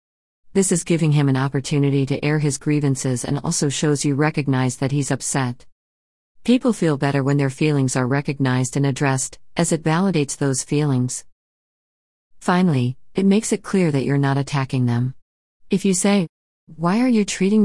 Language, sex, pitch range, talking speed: English, female, 130-160 Hz, 170 wpm